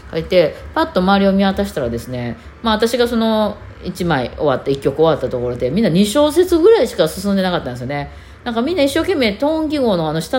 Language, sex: Japanese, female